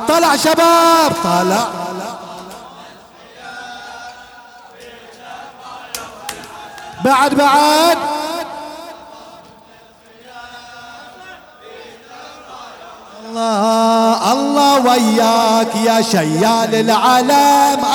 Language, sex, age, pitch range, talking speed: Arabic, male, 50-69, 225-295 Hz, 35 wpm